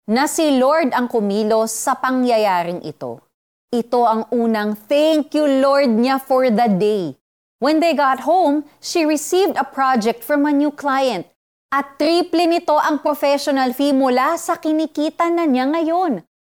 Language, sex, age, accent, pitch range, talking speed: Filipino, female, 30-49, native, 195-285 Hz, 150 wpm